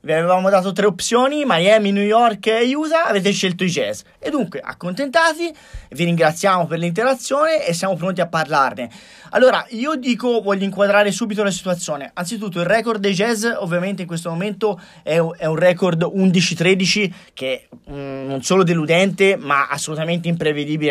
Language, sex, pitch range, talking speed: Italian, male, 160-195 Hz, 165 wpm